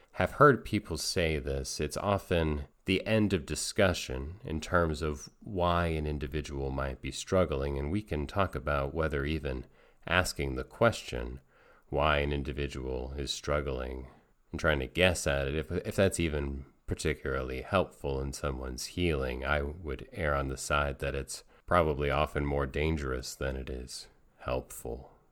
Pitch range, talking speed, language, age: 70-95 Hz, 155 wpm, English, 30-49